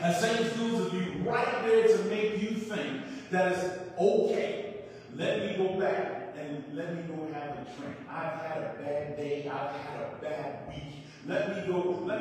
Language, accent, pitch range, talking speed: English, American, 170-215 Hz, 190 wpm